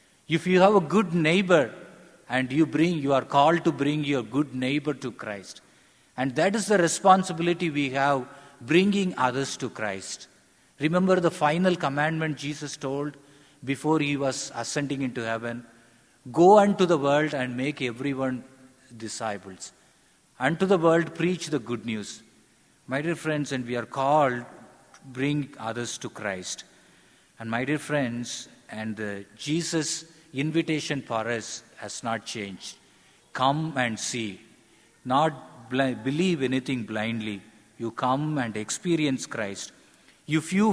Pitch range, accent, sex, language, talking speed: 120-160 Hz, Indian, male, English, 145 wpm